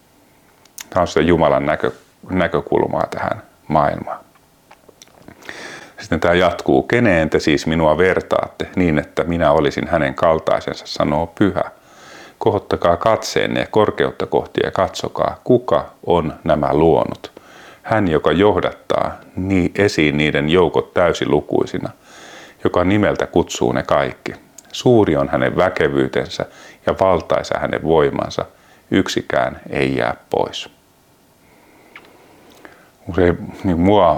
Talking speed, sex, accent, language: 105 wpm, male, native, Finnish